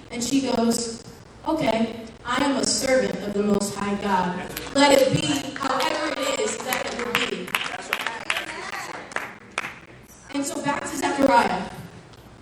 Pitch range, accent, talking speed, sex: 220-275 Hz, American, 125 wpm, female